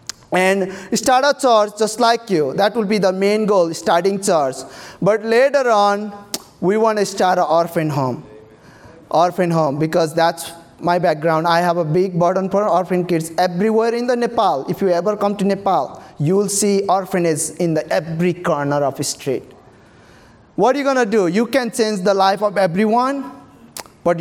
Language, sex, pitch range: English, male, 170-220 Hz